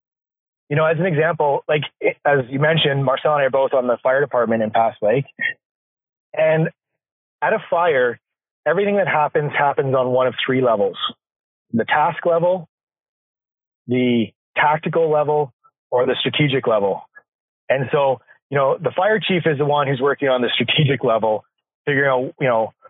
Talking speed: 170 wpm